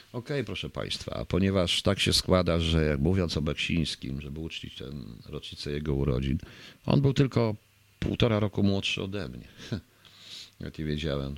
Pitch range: 75-105 Hz